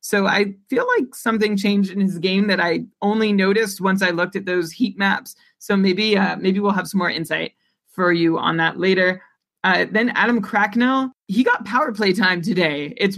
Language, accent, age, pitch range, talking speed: English, American, 30-49, 180-210 Hz, 205 wpm